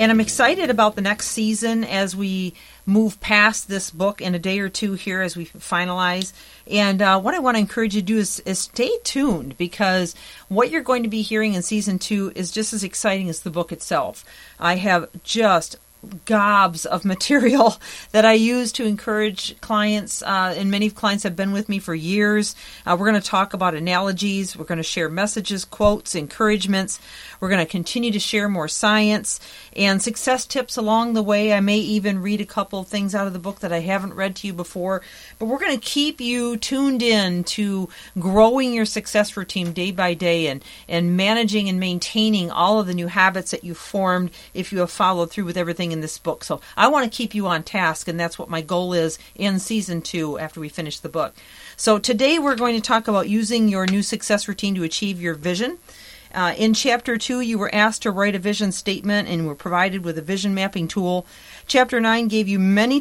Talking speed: 215 wpm